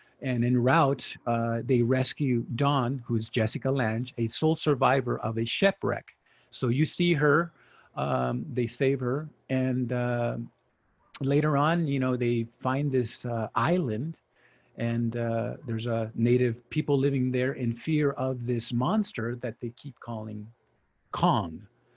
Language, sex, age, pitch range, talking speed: English, male, 50-69, 115-145 Hz, 145 wpm